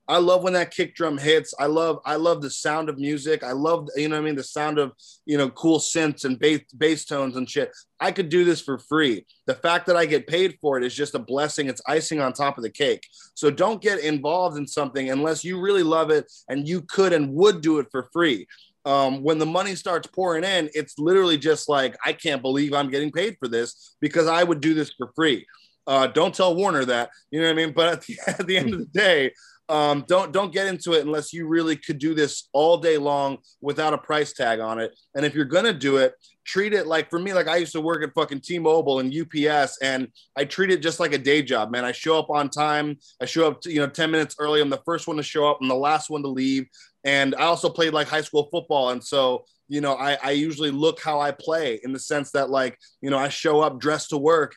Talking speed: 260 wpm